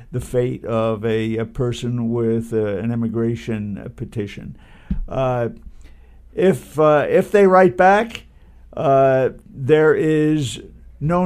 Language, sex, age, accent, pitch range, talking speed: English, male, 60-79, American, 115-155 Hz, 115 wpm